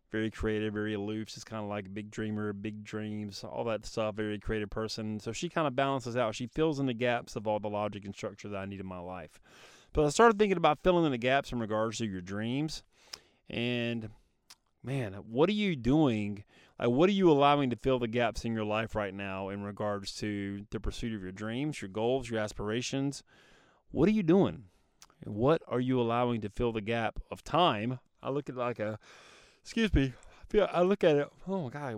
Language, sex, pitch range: English, male, 105-135 Hz